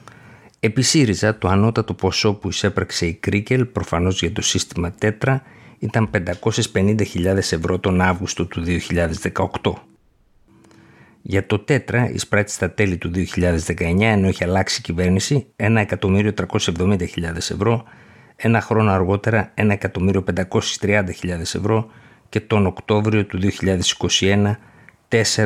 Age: 50-69